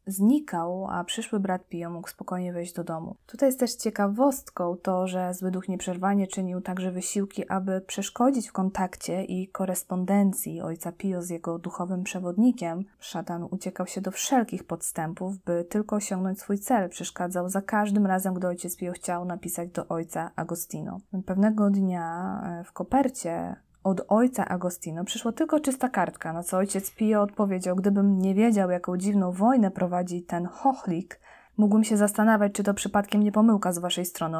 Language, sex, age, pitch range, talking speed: Polish, female, 20-39, 180-215 Hz, 160 wpm